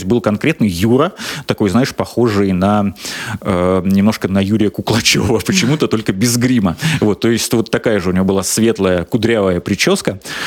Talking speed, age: 160 wpm, 30-49